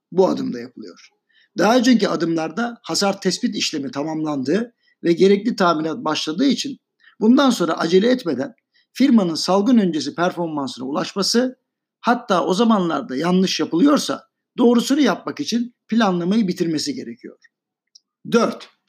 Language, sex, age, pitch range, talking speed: Turkish, male, 60-79, 170-240 Hz, 115 wpm